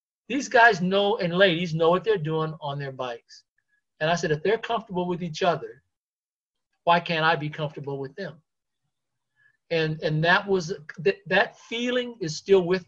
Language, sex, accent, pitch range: English, male, American, 145-190 Hz